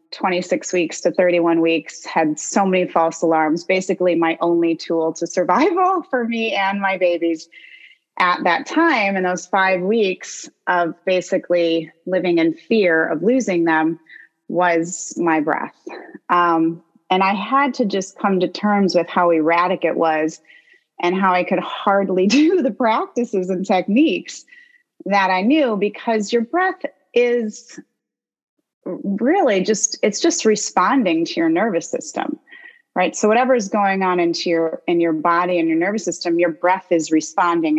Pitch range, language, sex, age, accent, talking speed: 170-245 Hz, English, female, 30-49, American, 155 wpm